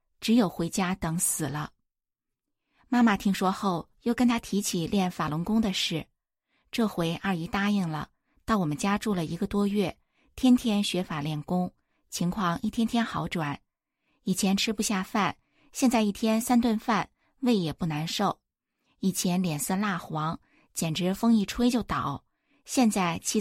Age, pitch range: 20-39, 170-220 Hz